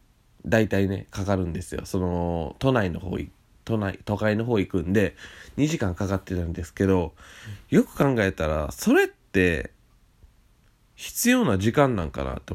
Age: 20-39